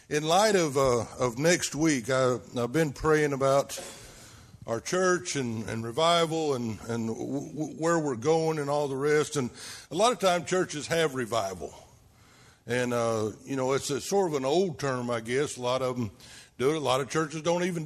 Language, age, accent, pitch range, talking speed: English, 60-79, American, 130-170 Hz, 200 wpm